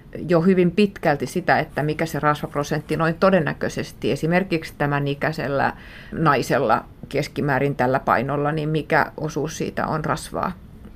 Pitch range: 150-170 Hz